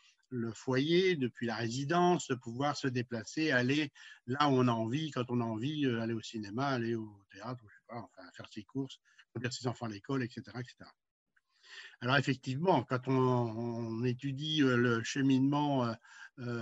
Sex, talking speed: male, 175 wpm